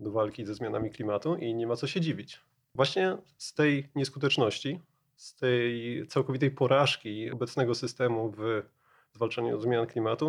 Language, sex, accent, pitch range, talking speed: Polish, male, native, 120-150 Hz, 145 wpm